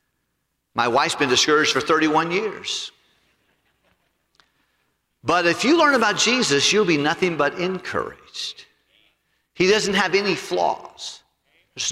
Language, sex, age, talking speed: English, male, 50-69, 120 wpm